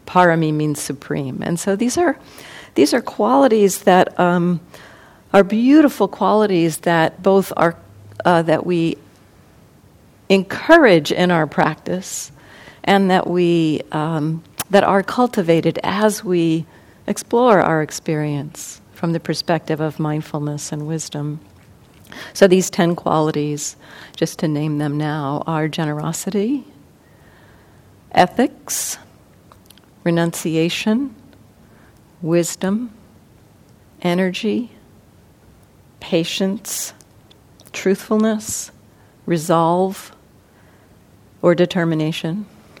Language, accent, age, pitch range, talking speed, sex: English, American, 50-69, 155-195 Hz, 90 wpm, female